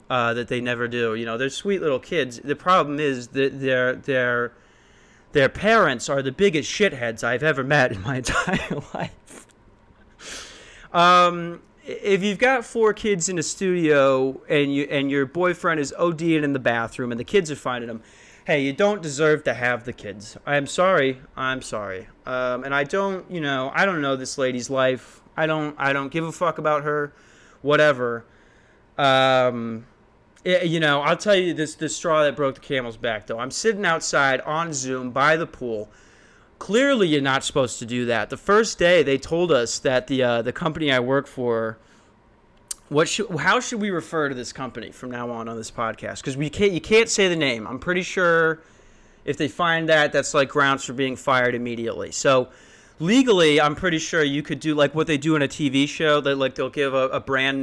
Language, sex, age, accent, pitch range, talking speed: English, male, 30-49, American, 125-160 Hz, 200 wpm